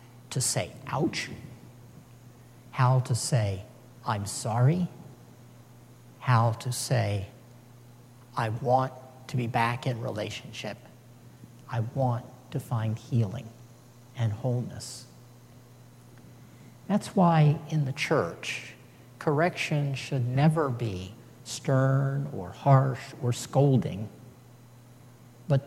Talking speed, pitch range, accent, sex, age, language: 95 wpm, 120-140 Hz, American, male, 50-69, English